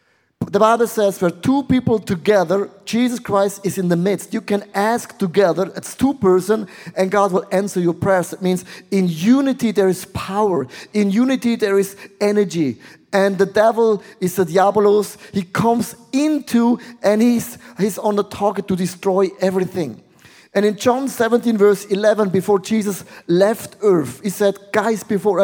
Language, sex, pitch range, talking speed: English, male, 185-220 Hz, 165 wpm